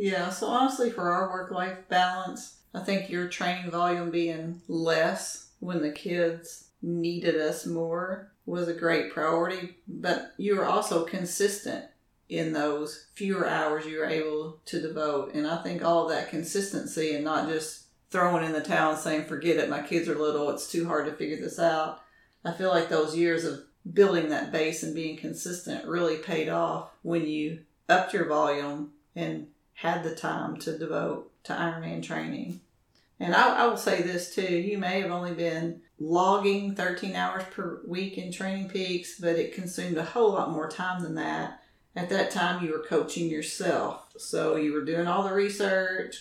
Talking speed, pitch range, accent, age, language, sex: 180 wpm, 155-185 Hz, American, 40-59, English, female